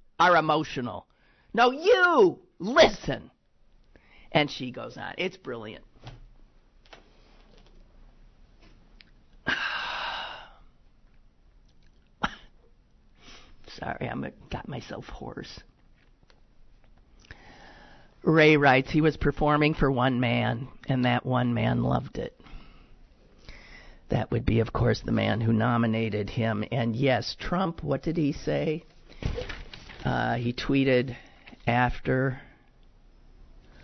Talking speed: 90 wpm